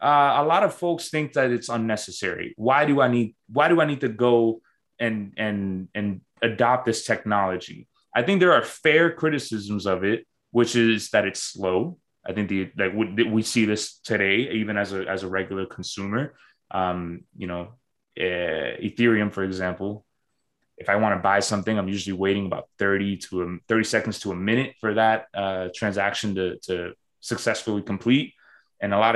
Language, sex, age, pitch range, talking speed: English, male, 20-39, 100-120 Hz, 185 wpm